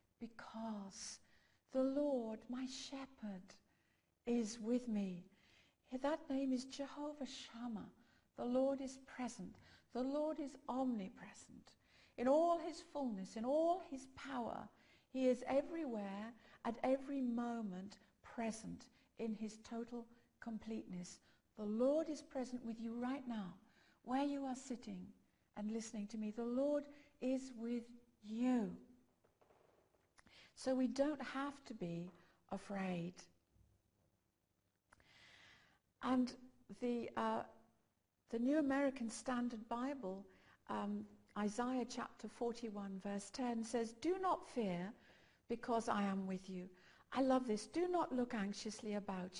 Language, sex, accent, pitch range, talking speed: English, female, British, 205-270 Hz, 120 wpm